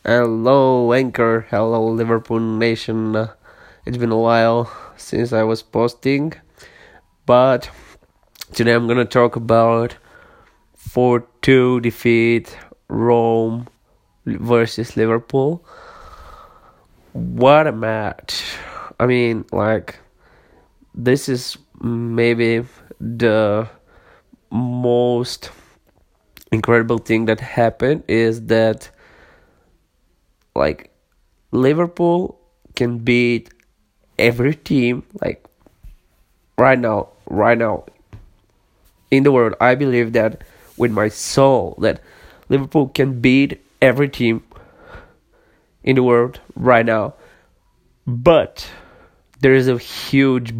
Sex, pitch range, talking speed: male, 115-125 Hz, 95 wpm